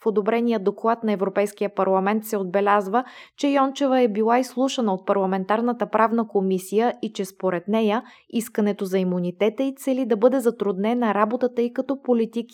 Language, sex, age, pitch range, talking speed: Bulgarian, female, 20-39, 200-240 Hz, 165 wpm